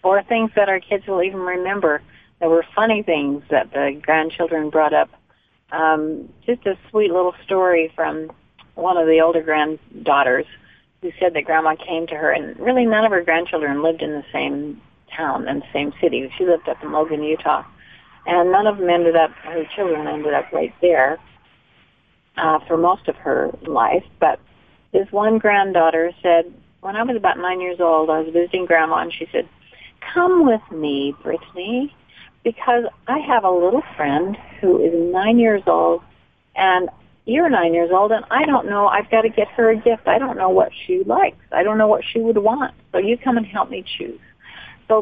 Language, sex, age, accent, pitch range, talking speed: English, female, 40-59, American, 160-210 Hz, 195 wpm